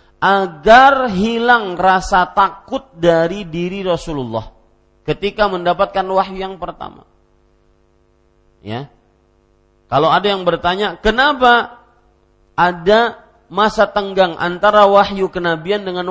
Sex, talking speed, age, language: male, 95 wpm, 40-59, Malay